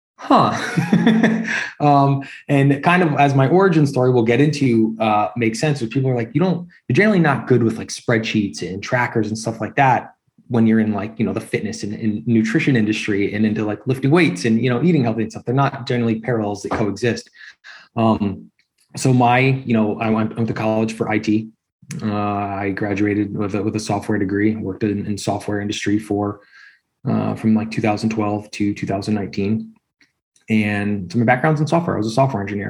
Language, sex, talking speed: English, male, 195 wpm